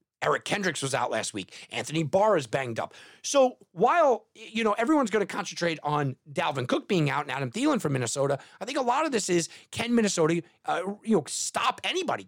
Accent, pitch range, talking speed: American, 145-200 Hz, 210 wpm